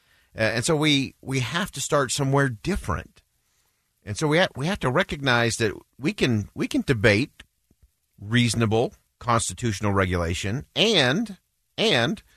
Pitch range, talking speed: 105-150 Hz, 140 wpm